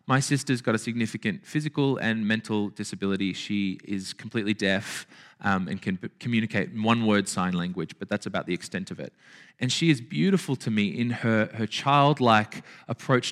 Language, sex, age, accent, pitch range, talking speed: English, male, 20-39, Australian, 100-125 Hz, 175 wpm